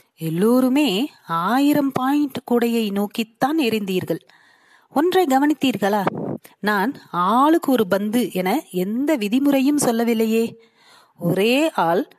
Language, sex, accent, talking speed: Tamil, female, native, 90 wpm